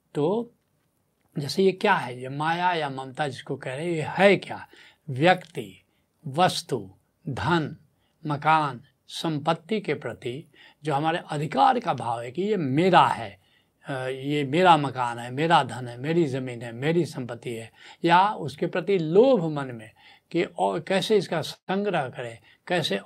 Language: Hindi